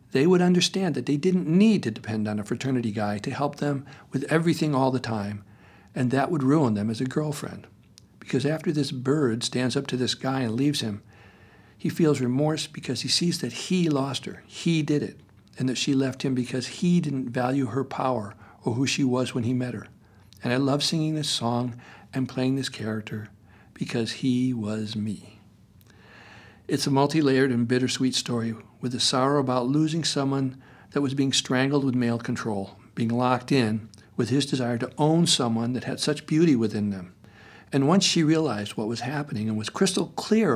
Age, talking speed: 60-79, 195 wpm